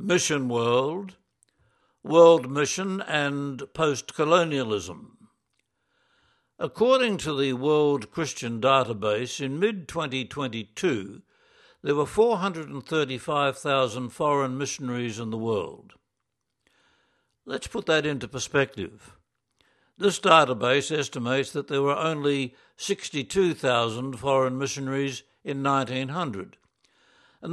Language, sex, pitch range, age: English, male, 130-155 Hz, 60-79